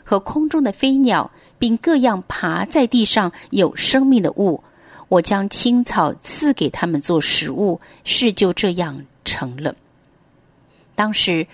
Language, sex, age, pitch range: Chinese, female, 50-69, 165-225 Hz